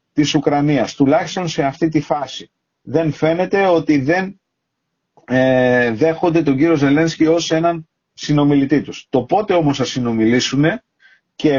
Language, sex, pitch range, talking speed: Greek, male, 135-170 Hz, 135 wpm